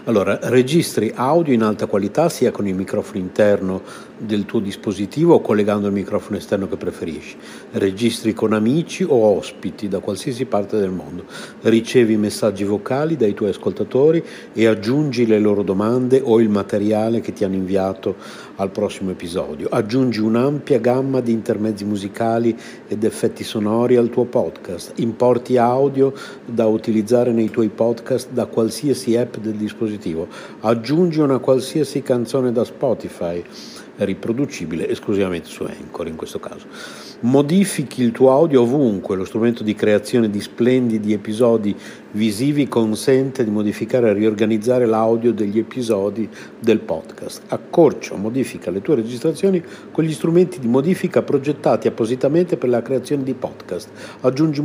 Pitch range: 105-130 Hz